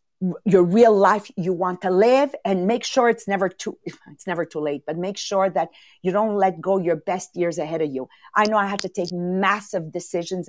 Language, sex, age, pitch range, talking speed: English, female, 50-69, 195-290 Hz, 225 wpm